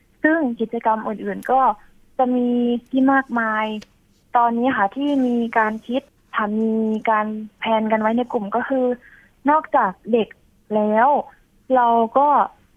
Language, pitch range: Thai, 220-260 Hz